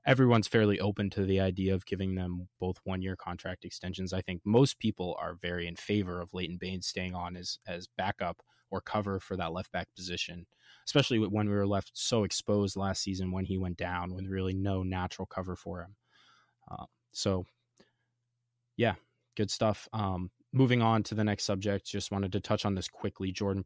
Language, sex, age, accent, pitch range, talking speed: English, male, 20-39, American, 95-110 Hz, 190 wpm